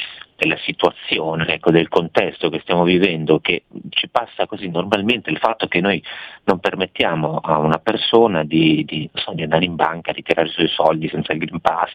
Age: 40-59